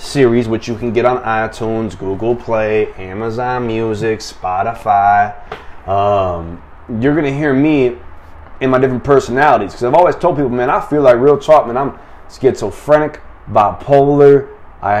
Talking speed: 150 wpm